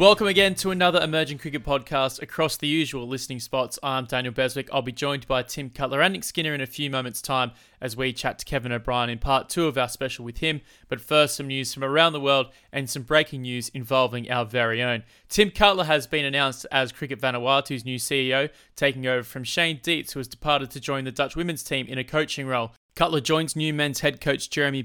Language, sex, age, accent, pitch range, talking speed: English, male, 20-39, Australian, 125-150 Hz, 225 wpm